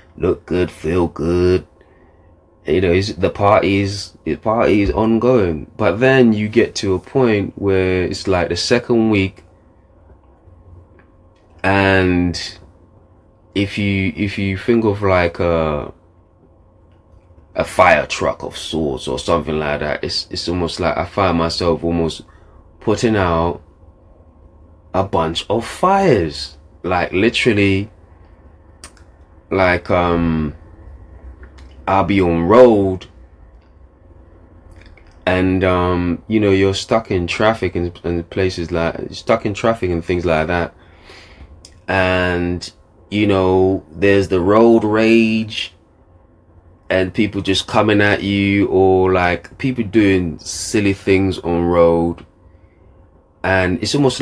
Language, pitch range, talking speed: English, 85-100 Hz, 120 wpm